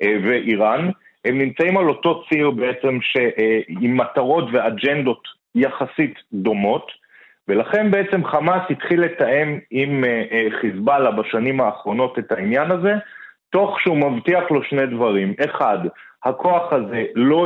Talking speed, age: 115 wpm, 30-49